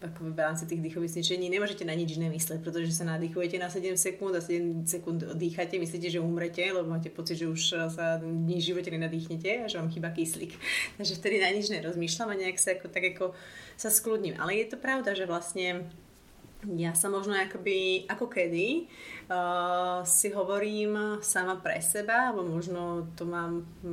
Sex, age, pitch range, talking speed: female, 30-49, 170-190 Hz, 175 wpm